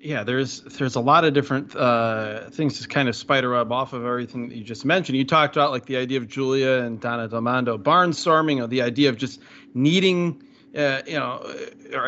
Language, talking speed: English, 215 wpm